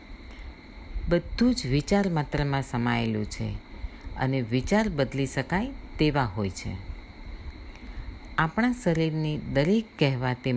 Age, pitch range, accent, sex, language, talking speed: 50-69, 115-155 Hz, native, female, Gujarati, 95 wpm